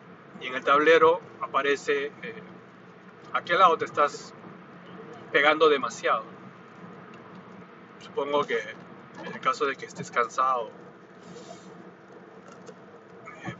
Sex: male